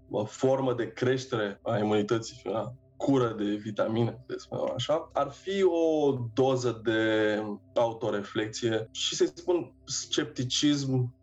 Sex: male